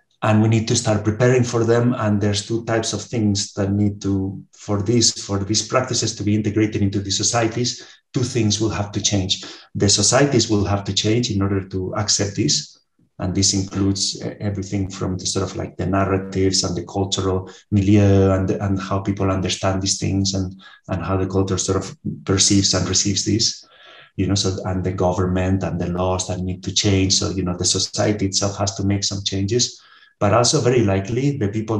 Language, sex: English, male